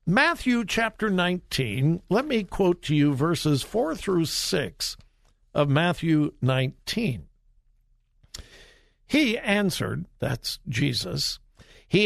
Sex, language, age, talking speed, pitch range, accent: male, English, 60-79, 100 wpm, 145-220 Hz, American